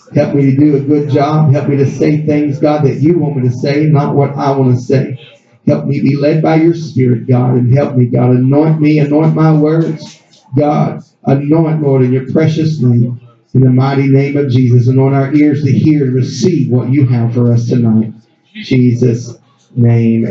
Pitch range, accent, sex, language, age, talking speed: 140-220 Hz, American, male, English, 50-69, 205 wpm